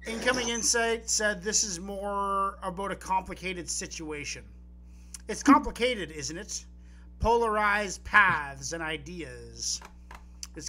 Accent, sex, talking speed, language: American, male, 105 wpm, English